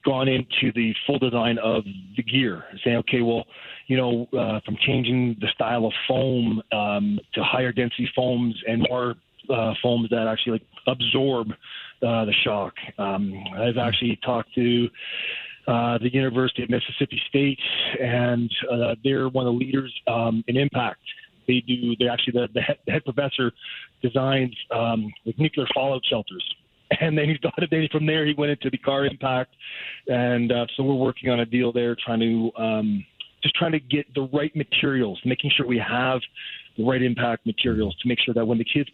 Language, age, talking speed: English, 30-49, 190 wpm